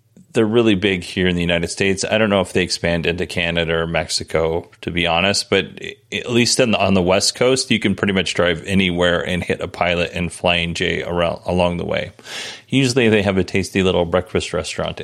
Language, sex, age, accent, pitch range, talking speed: English, male, 30-49, American, 90-115 Hz, 220 wpm